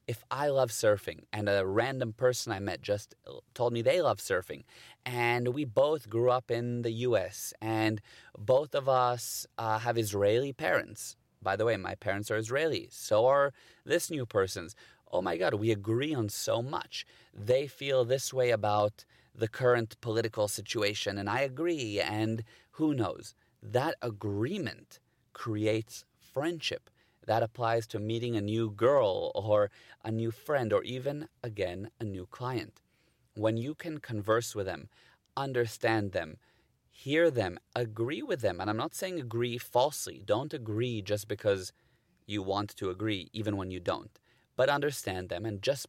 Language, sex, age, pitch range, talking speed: English, male, 30-49, 105-125 Hz, 160 wpm